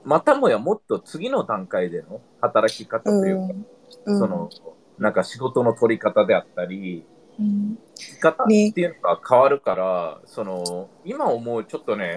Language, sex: Japanese, male